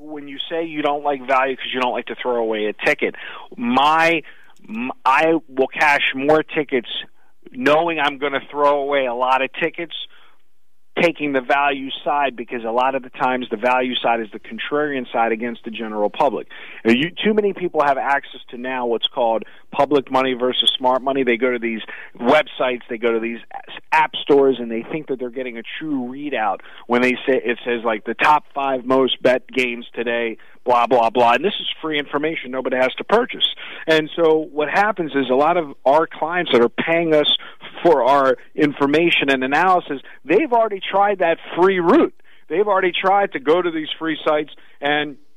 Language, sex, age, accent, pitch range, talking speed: English, male, 40-59, American, 125-165 Hz, 195 wpm